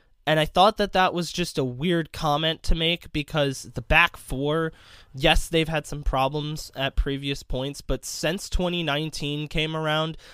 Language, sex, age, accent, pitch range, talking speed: English, male, 20-39, American, 135-155 Hz, 170 wpm